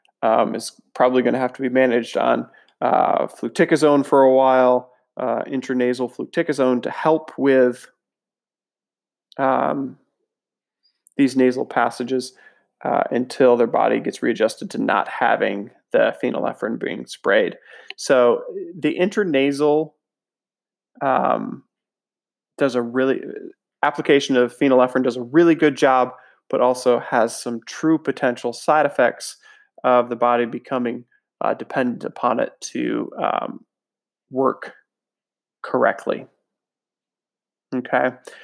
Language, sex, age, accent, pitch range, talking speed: English, male, 20-39, American, 125-140 Hz, 115 wpm